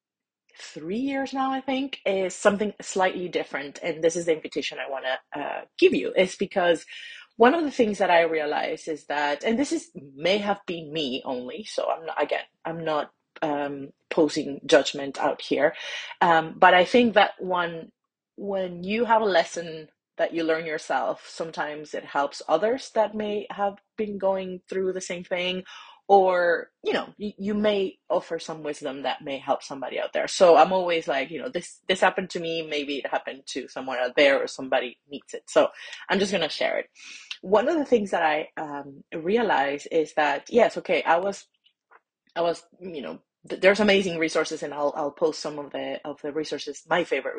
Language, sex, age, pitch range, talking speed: English, female, 30-49, 155-210 Hz, 195 wpm